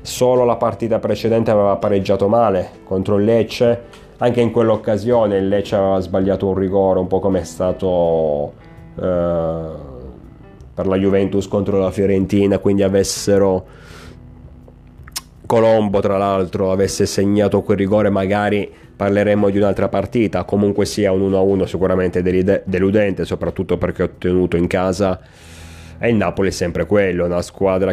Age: 30-49